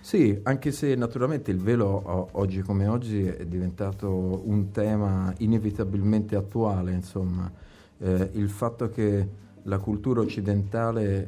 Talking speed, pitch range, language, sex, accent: 120 wpm, 90-105 Hz, Italian, male, native